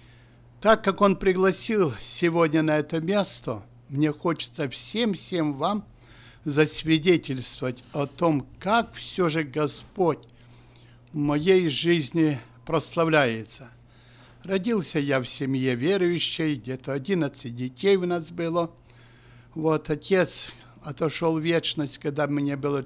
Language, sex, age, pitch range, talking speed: Russian, male, 60-79, 130-175 Hz, 110 wpm